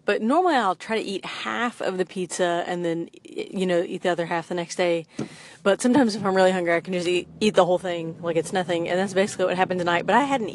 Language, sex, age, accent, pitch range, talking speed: English, female, 30-49, American, 175-210 Hz, 265 wpm